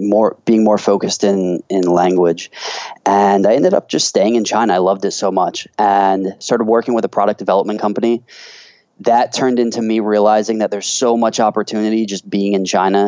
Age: 20-39